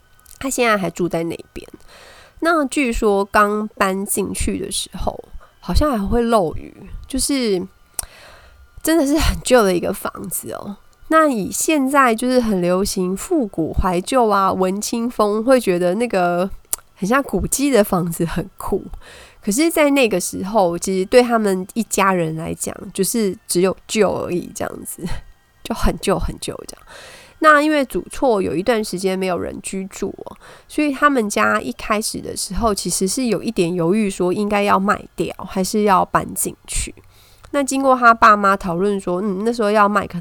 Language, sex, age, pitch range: Chinese, female, 20-39, 185-250 Hz